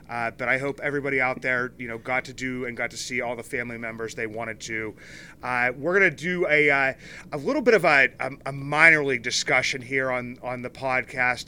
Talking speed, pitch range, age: 230 wpm, 125-150 Hz, 30-49